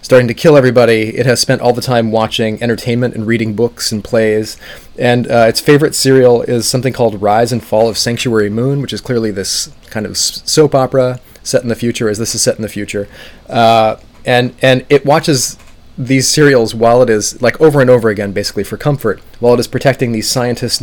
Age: 30-49